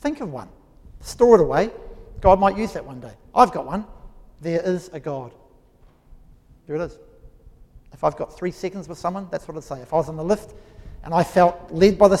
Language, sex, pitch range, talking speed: English, male, 155-210 Hz, 220 wpm